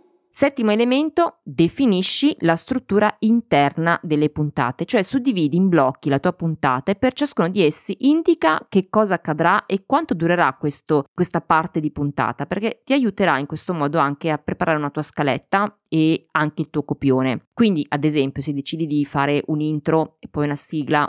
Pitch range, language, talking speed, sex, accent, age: 150-200 Hz, Italian, 175 wpm, female, native, 20-39